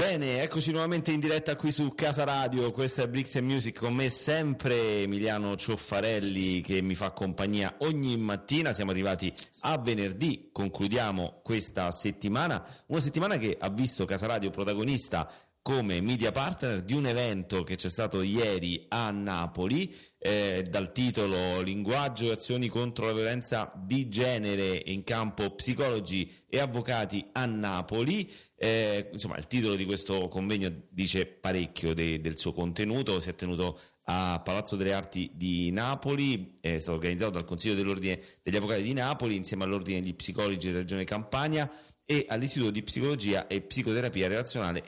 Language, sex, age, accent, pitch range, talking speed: Italian, male, 30-49, native, 95-125 Hz, 155 wpm